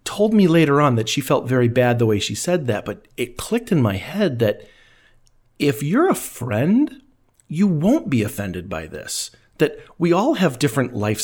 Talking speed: 200 wpm